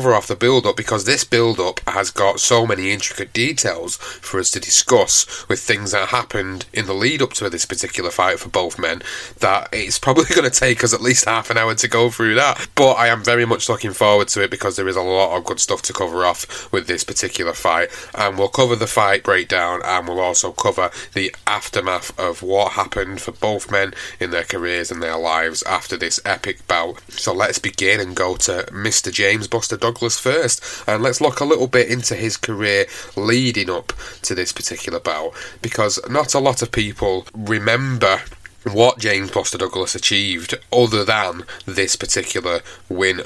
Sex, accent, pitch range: male, British, 95-120 Hz